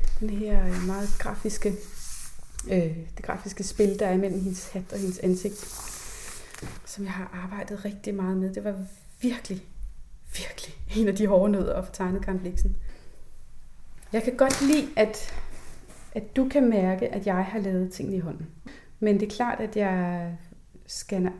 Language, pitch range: Danish, 185-220 Hz